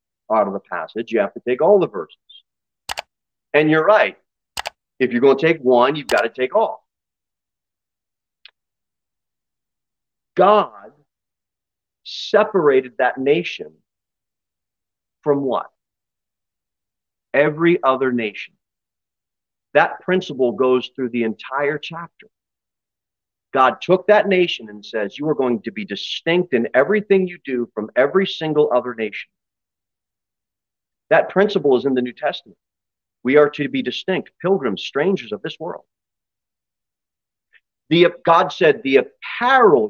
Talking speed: 125 wpm